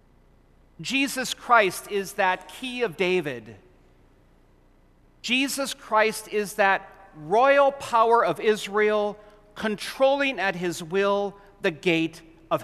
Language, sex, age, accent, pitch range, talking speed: English, male, 40-59, American, 175-230 Hz, 105 wpm